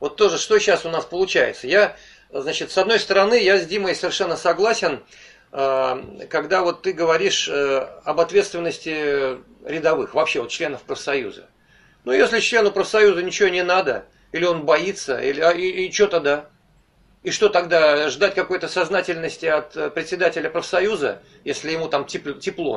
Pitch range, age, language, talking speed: 155-220 Hz, 40-59, Russian, 140 wpm